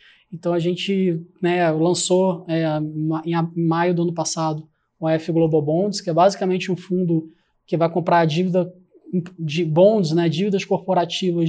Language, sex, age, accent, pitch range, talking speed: Portuguese, male, 20-39, Brazilian, 165-180 Hz, 150 wpm